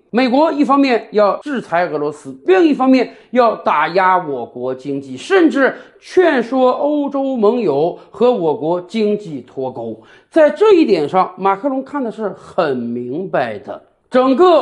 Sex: male